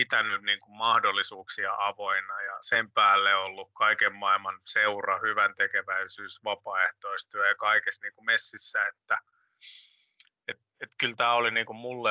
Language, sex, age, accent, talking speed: Finnish, male, 30-49, native, 125 wpm